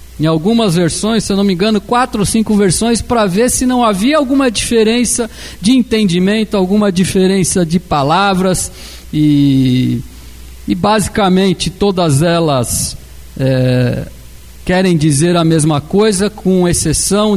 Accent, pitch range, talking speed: Brazilian, 140-205 Hz, 130 wpm